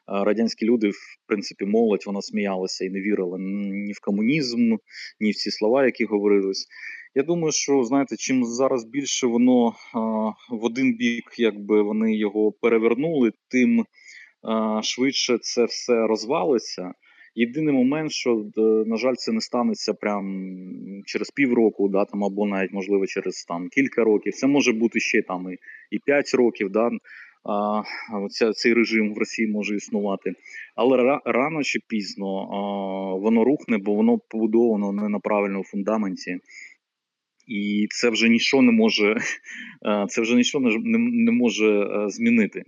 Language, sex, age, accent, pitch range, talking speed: Ukrainian, male, 20-39, native, 105-125 Hz, 140 wpm